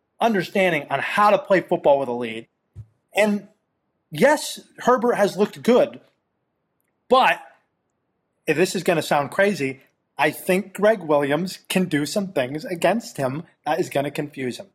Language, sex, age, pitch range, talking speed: English, male, 30-49, 140-185 Hz, 160 wpm